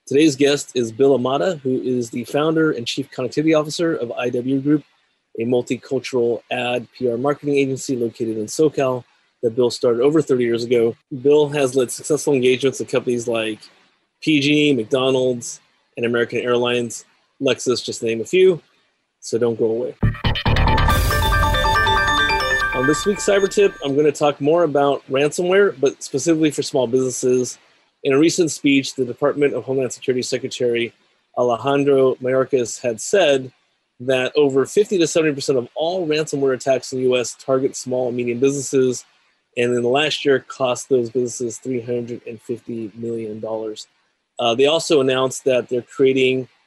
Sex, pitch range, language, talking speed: male, 120-145 Hz, English, 155 wpm